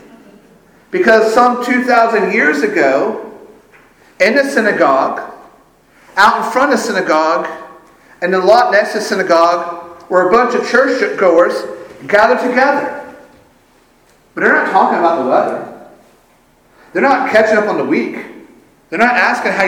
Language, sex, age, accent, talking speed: English, male, 50-69, American, 145 wpm